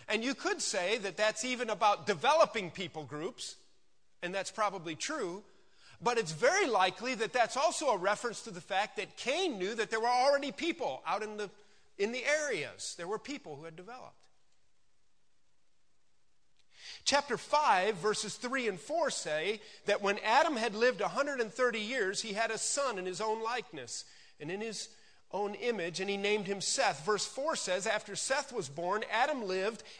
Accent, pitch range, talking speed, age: American, 175-240 Hz, 175 wpm, 40-59